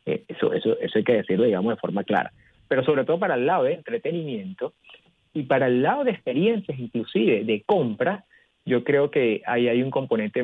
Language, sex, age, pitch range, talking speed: Spanish, male, 40-59, 125-185 Hz, 195 wpm